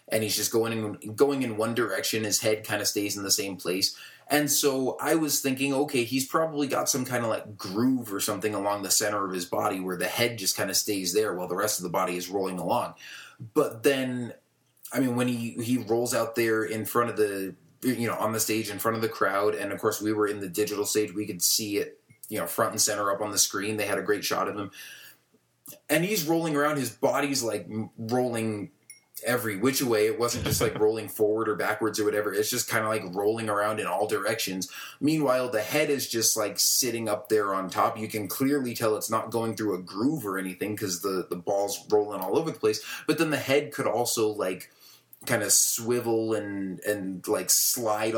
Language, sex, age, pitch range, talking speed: English, male, 20-39, 105-125 Hz, 230 wpm